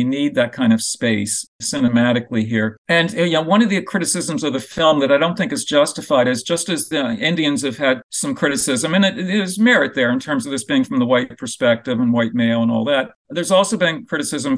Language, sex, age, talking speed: English, male, 50-69, 240 wpm